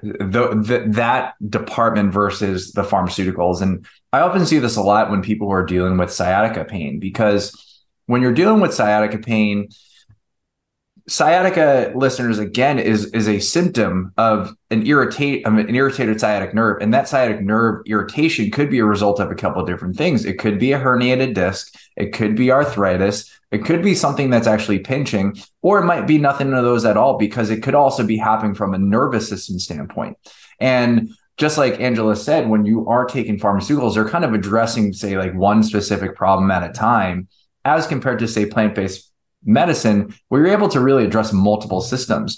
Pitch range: 100-125 Hz